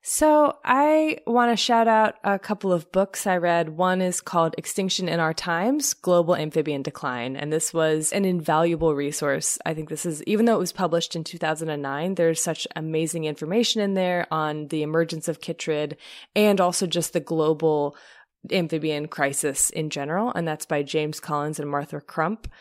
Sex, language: female, English